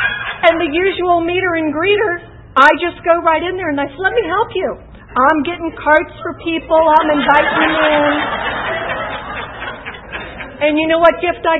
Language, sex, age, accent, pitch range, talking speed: English, female, 50-69, American, 225-295 Hz, 175 wpm